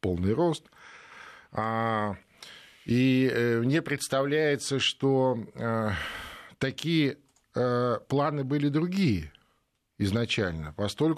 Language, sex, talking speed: Russian, male, 60 wpm